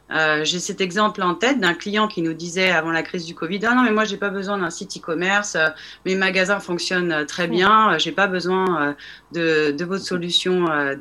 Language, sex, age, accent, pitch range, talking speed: French, female, 30-49, French, 155-200 Hz, 250 wpm